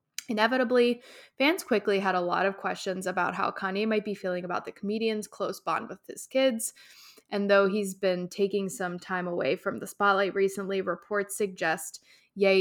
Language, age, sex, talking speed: English, 20-39, female, 175 wpm